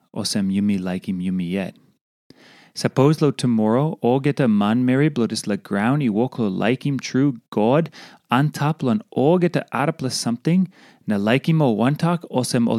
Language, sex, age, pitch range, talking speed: English, male, 30-49, 125-180 Hz, 190 wpm